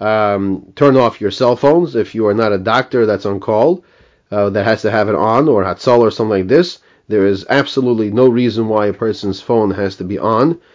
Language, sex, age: English, male, 30-49